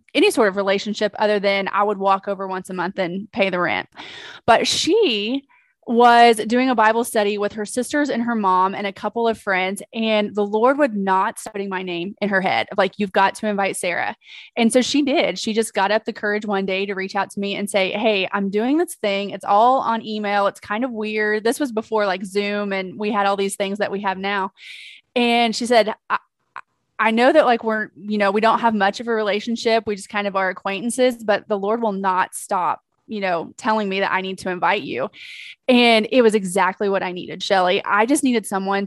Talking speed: 235 wpm